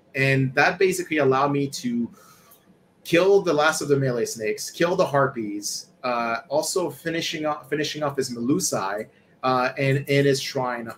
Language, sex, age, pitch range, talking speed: English, male, 30-49, 125-165 Hz, 160 wpm